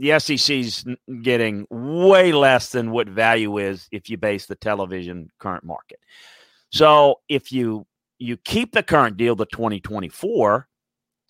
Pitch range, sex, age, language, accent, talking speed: 120-165 Hz, male, 40-59, English, American, 145 wpm